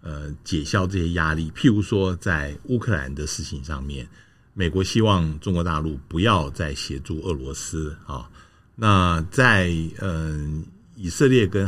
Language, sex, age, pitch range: Chinese, male, 60-79, 80-105 Hz